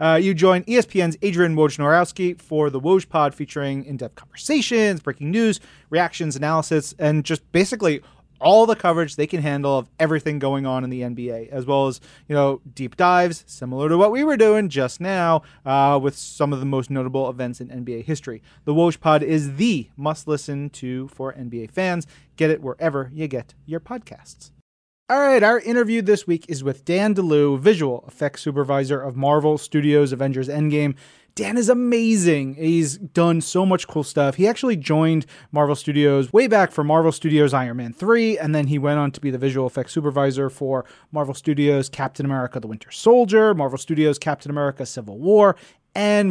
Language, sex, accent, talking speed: English, male, American, 185 wpm